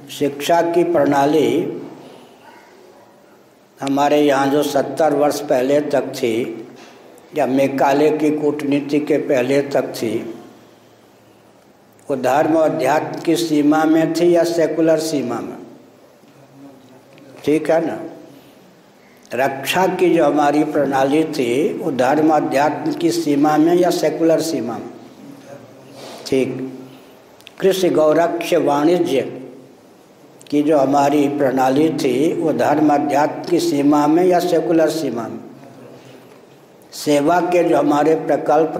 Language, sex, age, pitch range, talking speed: Hindi, male, 60-79, 140-160 Hz, 115 wpm